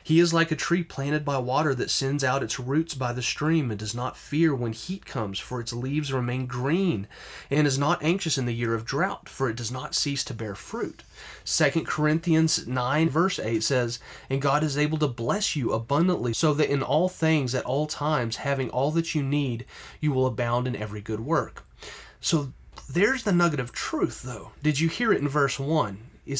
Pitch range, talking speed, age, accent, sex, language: 125-155 Hz, 215 wpm, 30-49, American, male, English